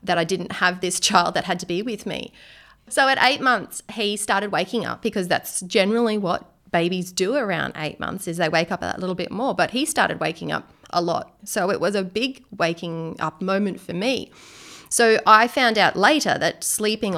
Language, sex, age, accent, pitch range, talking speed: English, female, 30-49, Australian, 175-225 Hz, 215 wpm